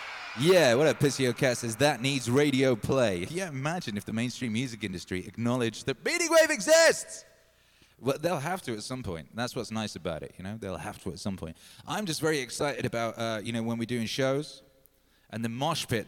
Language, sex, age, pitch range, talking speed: English, male, 20-39, 110-135 Hz, 215 wpm